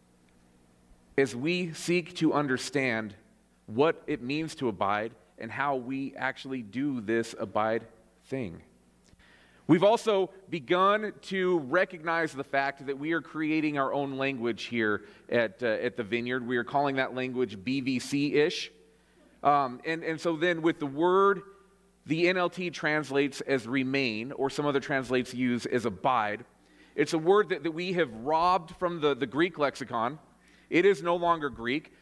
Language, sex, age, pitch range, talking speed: English, male, 40-59, 115-165 Hz, 155 wpm